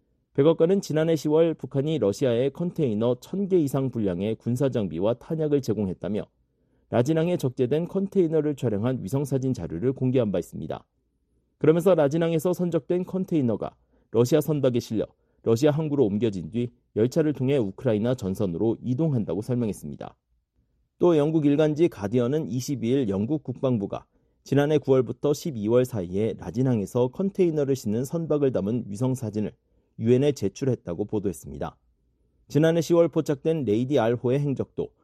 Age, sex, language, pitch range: 40-59, male, Korean, 110-155 Hz